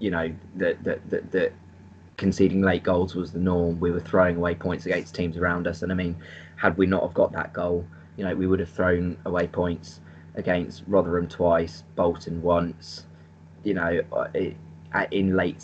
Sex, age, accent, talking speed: male, 20-39, British, 190 wpm